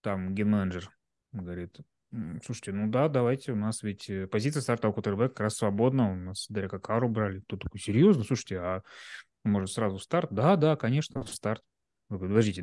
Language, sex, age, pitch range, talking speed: Russian, male, 20-39, 105-130 Hz, 170 wpm